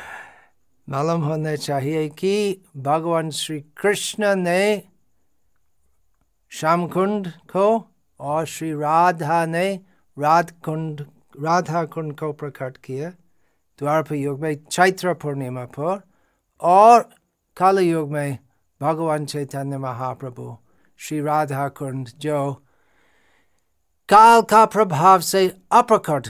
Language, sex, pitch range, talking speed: Hindi, male, 130-170 Hz, 95 wpm